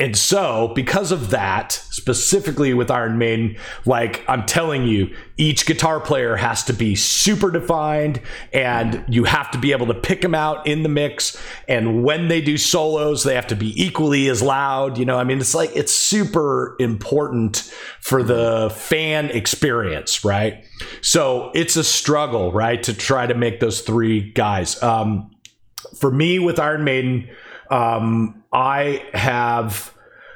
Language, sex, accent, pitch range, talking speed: English, male, American, 115-150 Hz, 160 wpm